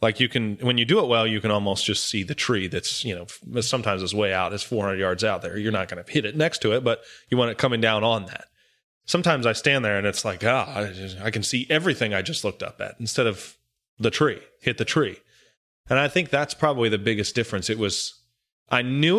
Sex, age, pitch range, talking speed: male, 30-49, 105-135 Hz, 255 wpm